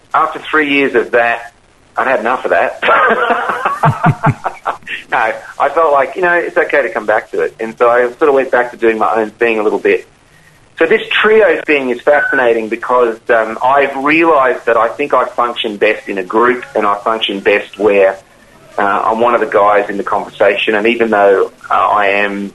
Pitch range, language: 115-165 Hz, English